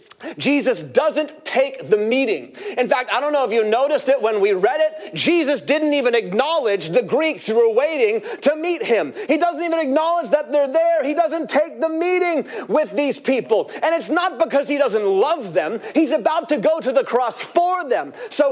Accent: American